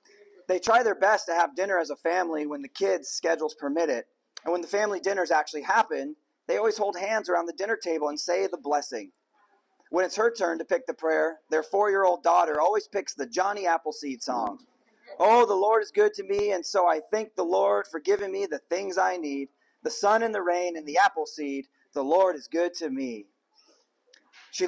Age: 30-49